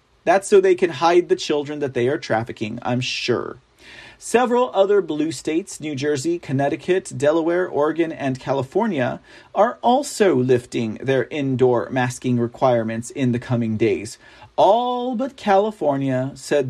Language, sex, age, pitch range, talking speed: English, male, 40-59, 125-180 Hz, 140 wpm